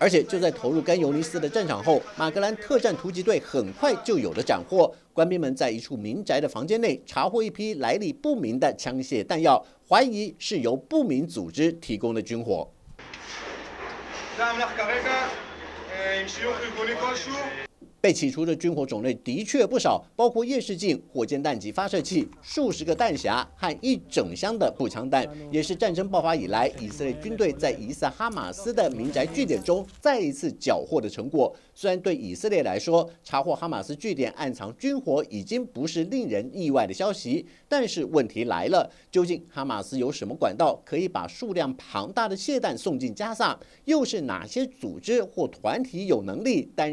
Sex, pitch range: male, 150-250 Hz